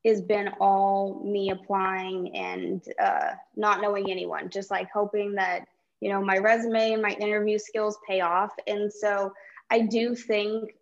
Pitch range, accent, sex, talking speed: 195-220 Hz, American, female, 160 wpm